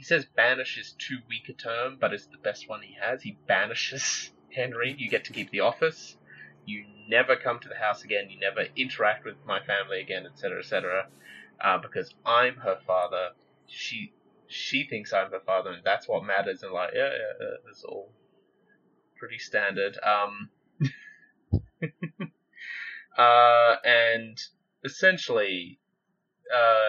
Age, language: 20-39, English